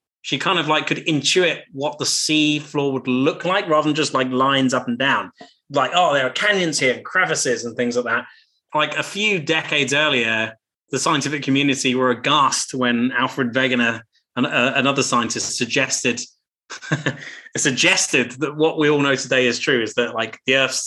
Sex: male